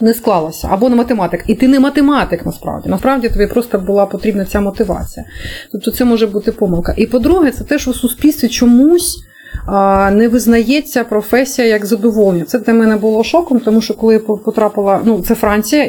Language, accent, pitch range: Ukrainian, native, 205-255 Hz